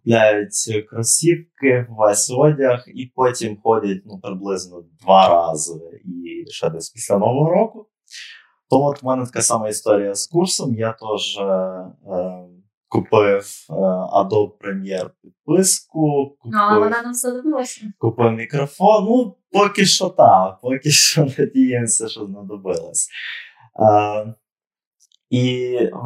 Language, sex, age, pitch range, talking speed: Ukrainian, male, 20-39, 105-150 Hz, 115 wpm